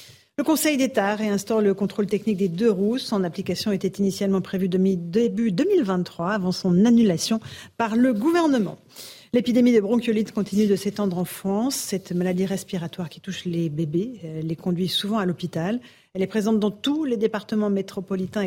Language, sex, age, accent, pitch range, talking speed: French, female, 50-69, French, 185-220 Hz, 170 wpm